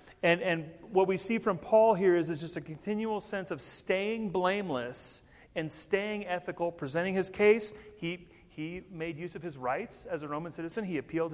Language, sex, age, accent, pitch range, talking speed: English, male, 30-49, American, 140-180 Hz, 190 wpm